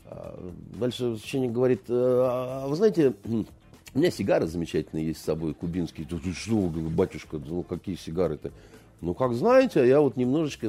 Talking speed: 130 wpm